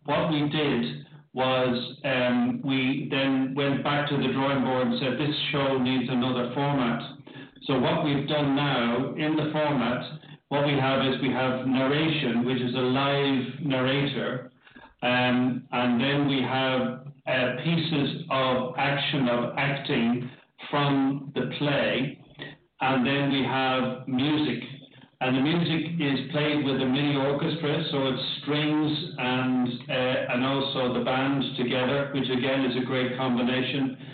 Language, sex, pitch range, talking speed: English, male, 130-145 Hz, 150 wpm